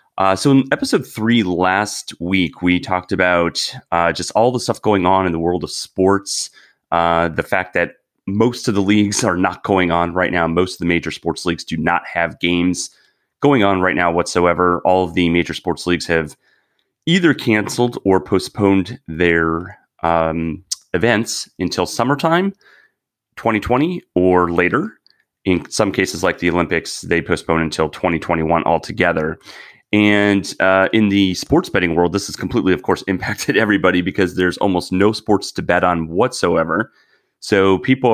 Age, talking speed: 30-49, 165 wpm